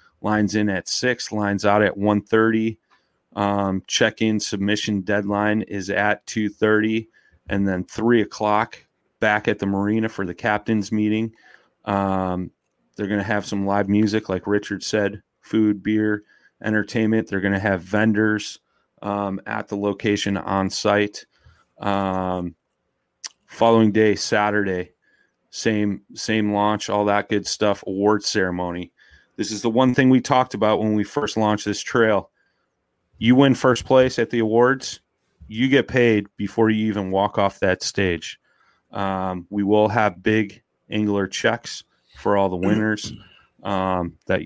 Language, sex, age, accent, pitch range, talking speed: English, male, 30-49, American, 100-110 Hz, 150 wpm